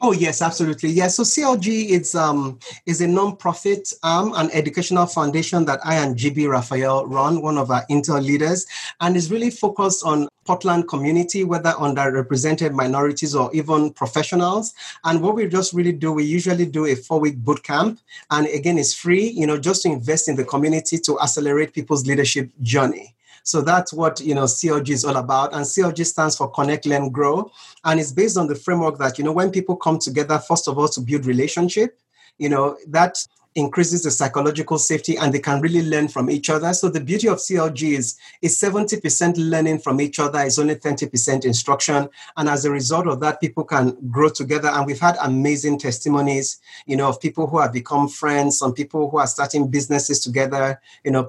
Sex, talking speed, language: male, 195 wpm, English